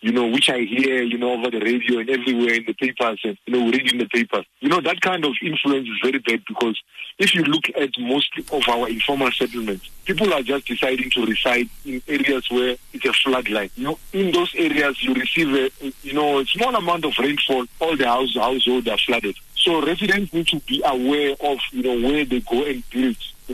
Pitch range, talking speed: 120-150 Hz, 225 wpm